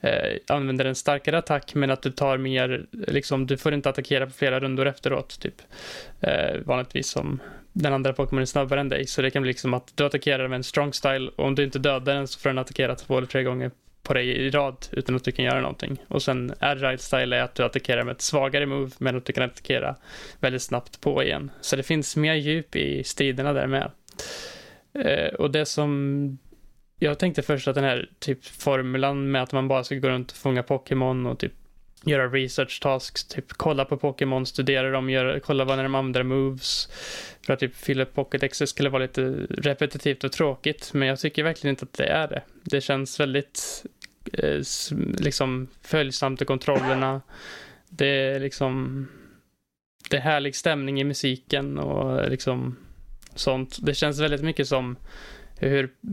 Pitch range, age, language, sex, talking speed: 130-145 Hz, 20-39, Swedish, male, 190 wpm